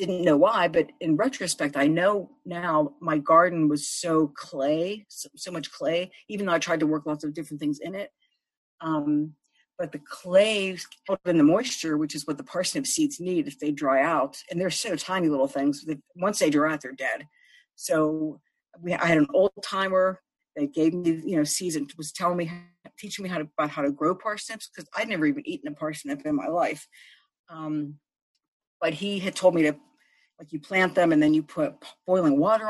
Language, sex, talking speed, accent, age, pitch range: English, female, 210 wpm, American, 50-69, 150-200 Hz